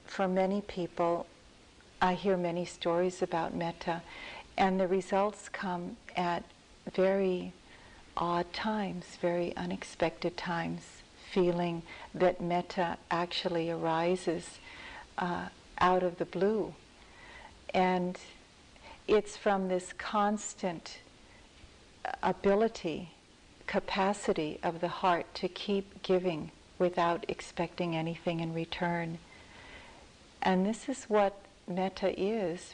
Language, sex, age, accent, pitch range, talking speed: English, female, 60-79, American, 170-195 Hz, 100 wpm